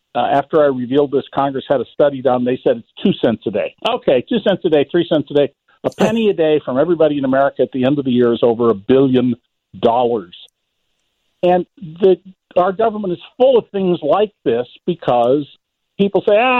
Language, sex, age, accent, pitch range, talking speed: English, male, 50-69, American, 135-190 Hz, 210 wpm